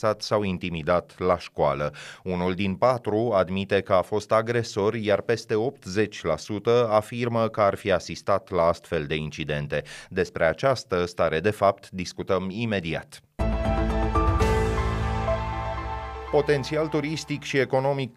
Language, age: Romanian, 30-49